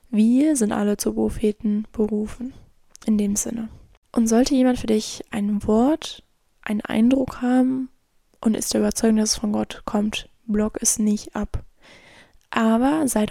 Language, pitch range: German, 220-245 Hz